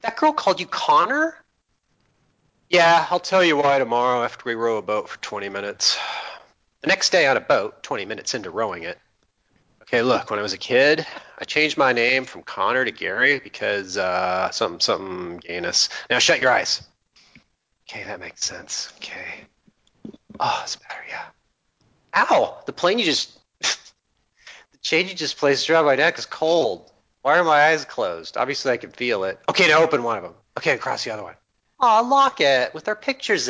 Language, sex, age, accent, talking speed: English, male, 30-49, American, 190 wpm